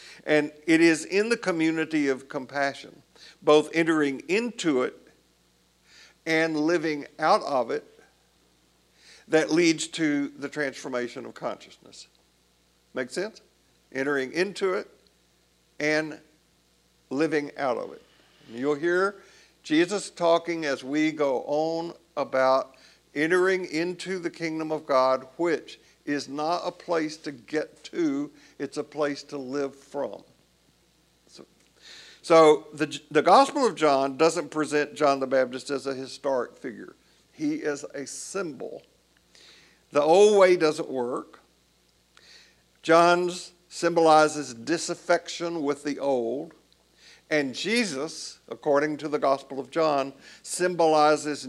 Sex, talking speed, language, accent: male, 120 wpm, English, American